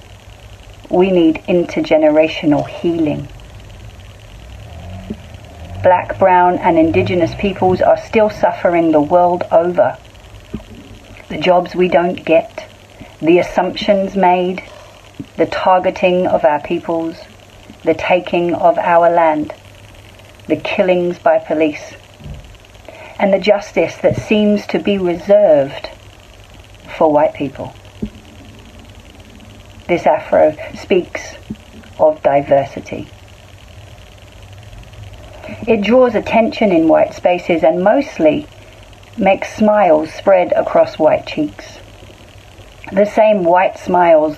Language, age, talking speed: English, 50-69, 95 wpm